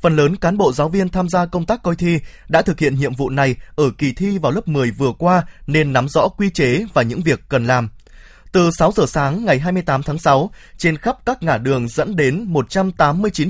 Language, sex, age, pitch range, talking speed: Vietnamese, male, 20-39, 130-175 Hz, 230 wpm